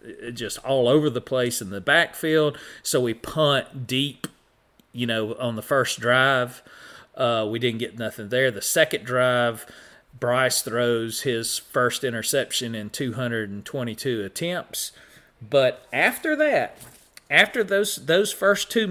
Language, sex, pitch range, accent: English, male, 120-165 Hz, American